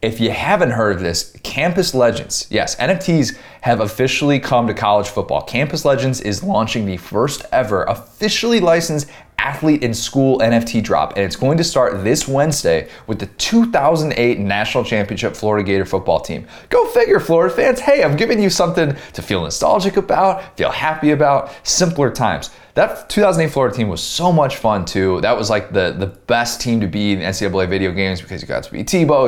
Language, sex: English, male